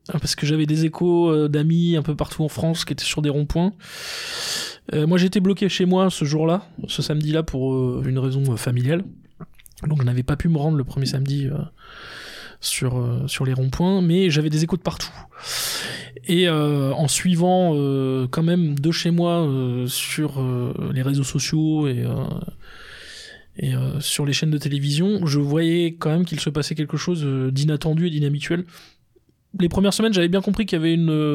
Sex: male